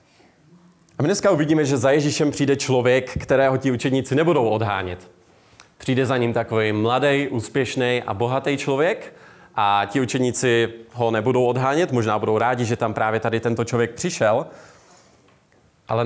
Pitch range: 110-135 Hz